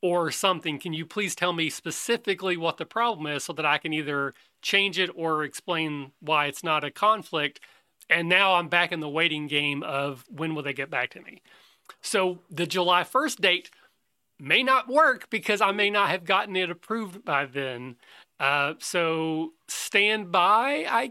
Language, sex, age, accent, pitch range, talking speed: English, male, 40-59, American, 155-200 Hz, 185 wpm